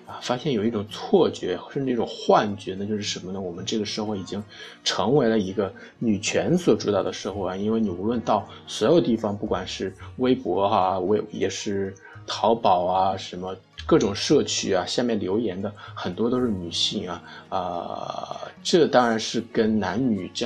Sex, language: male, Chinese